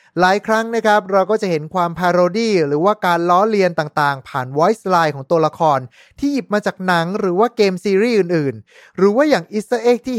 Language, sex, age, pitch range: Thai, male, 20-39, 155-210 Hz